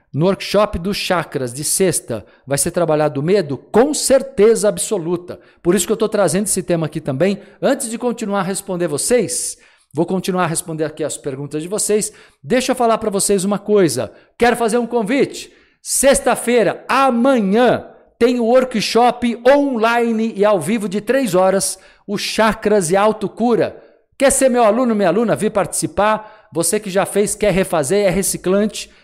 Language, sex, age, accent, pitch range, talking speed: Portuguese, male, 50-69, Brazilian, 170-220 Hz, 175 wpm